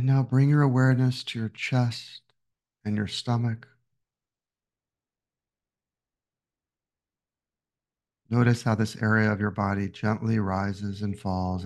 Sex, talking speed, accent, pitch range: male, 115 wpm, American, 105-120 Hz